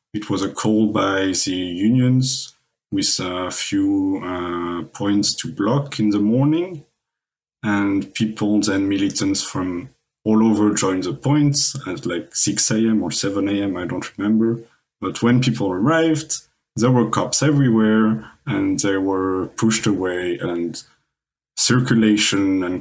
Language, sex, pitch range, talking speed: English, male, 95-125 Hz, 140 wpm